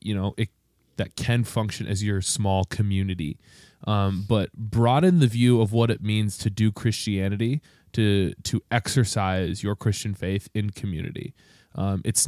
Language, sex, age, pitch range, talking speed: English, male, 20-39, 100-115 Hz, 155 wpm